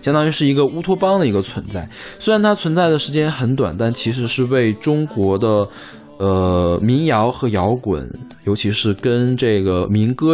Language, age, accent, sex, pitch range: Chinese, 20-39, native, male, 100-135 Hz